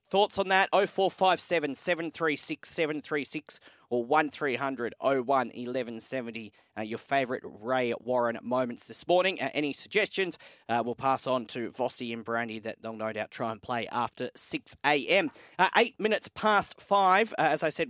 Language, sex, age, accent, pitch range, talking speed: English, male, 30-49, Australian, 130-165 Hz, 155 wpm